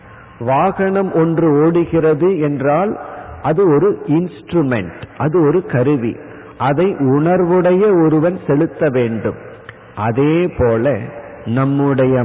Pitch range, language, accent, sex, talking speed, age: 125-170 Hz, Tamil, native, male, 90 wpm, 50-69